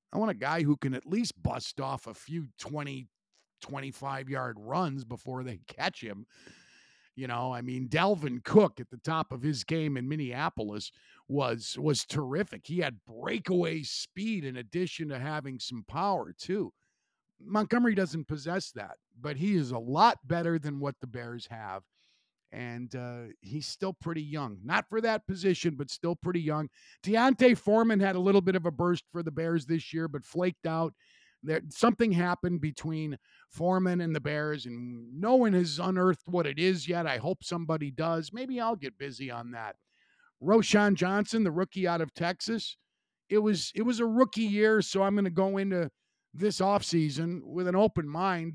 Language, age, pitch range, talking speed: English, 50-69, 135-190 Hz, 180 wpm